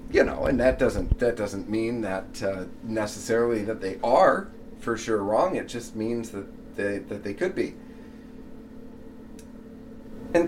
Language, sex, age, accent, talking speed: English, male, 40-59, American, 155 wpm